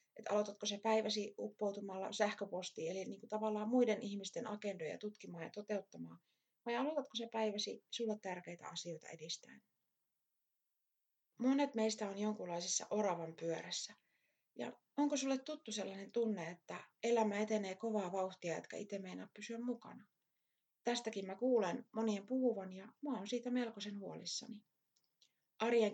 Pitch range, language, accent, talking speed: 195-235 Hz, Finnish, native, 130 wpm